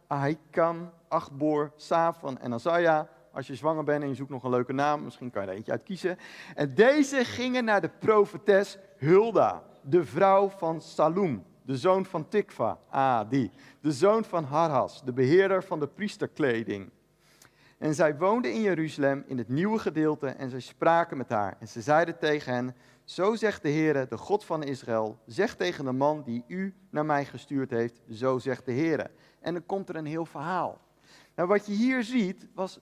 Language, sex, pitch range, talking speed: Dutch, male, 140-195 Hz, 185 wpm